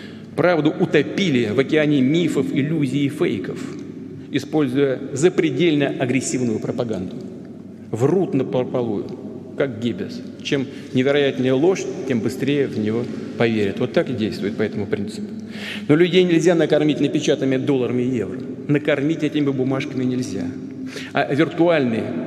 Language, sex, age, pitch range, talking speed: Russian, male, 40-59, 125-155 Hz, 125 wpm